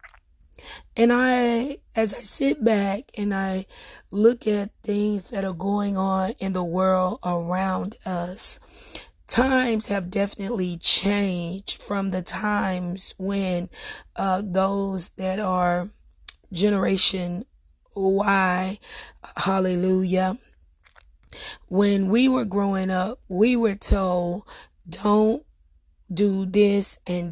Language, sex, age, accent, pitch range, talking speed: English, female, 30-49, American, 180-205 Hz, 105 wpm